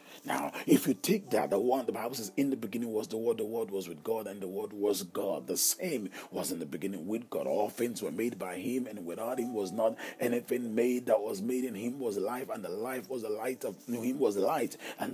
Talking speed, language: 260 wpm, English